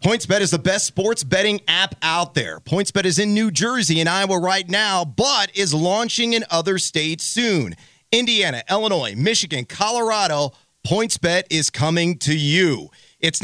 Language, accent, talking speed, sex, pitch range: English, American, 155 wpm, male, 165-215 Hz